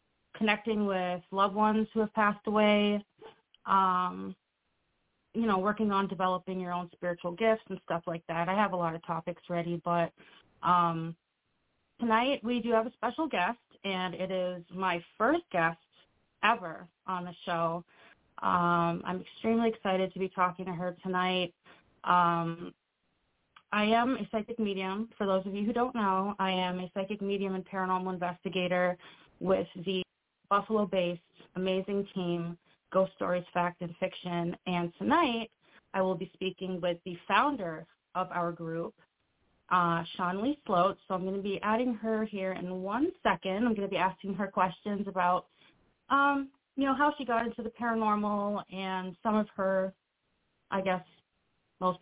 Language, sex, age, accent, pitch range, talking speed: English, female, 30-49, American, 180-215 Hz, 160 wpm